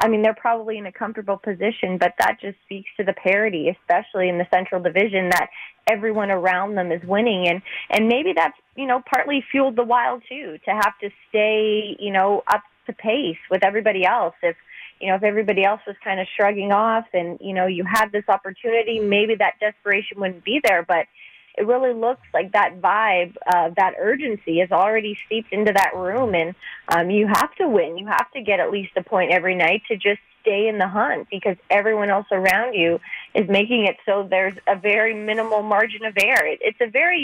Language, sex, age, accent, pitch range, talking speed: English, female, 30-49, American, 190-220 Hz, 210 wpm